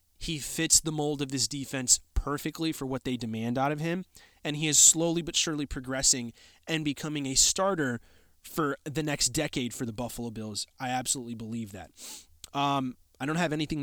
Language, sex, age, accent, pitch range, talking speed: English, male, 30-49, American, 115-155 Hz, 185 wpm